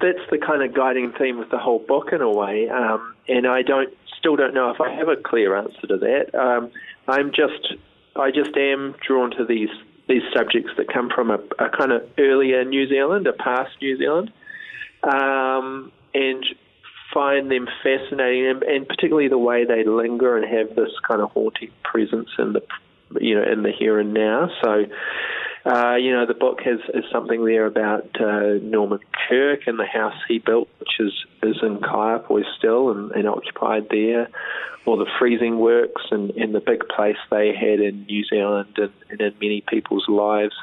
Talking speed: 190 wpm